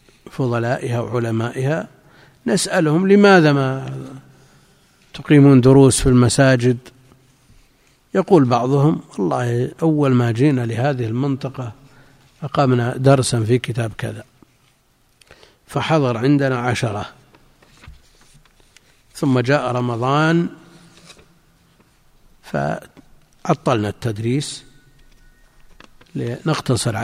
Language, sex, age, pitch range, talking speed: Arabic, male, 50-69, 120-140 Hz, 70 wpm